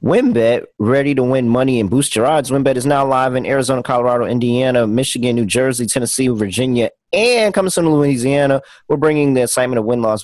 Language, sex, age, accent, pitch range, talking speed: English, male, 30-49, American, 110-140 Hz, 195 wpm